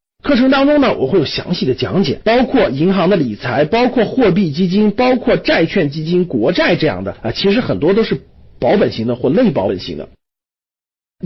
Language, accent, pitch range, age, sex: Chinese, native, 145-245 Hz, 50-69, male